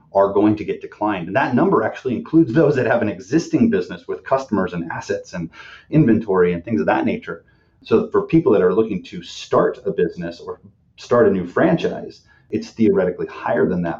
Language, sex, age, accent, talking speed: English, male, 30-49, American, 200 wpm